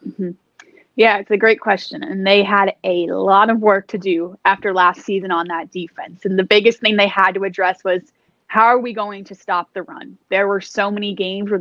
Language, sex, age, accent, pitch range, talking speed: English, female, 20-39, American, 185-215 Hz, 235 wpm